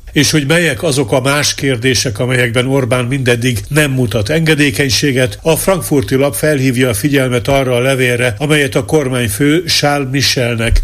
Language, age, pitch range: Hungarian, 50-69, 120-145 Hz